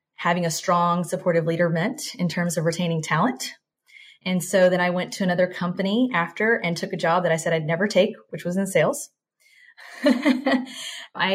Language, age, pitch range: English, 30-49, 165-195 Hz